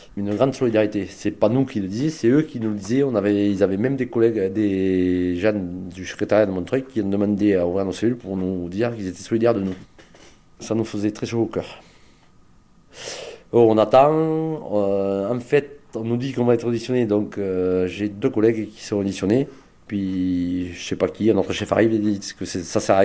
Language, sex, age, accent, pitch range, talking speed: French, male, 40-59, French, 100-125 Hz, 215 wpm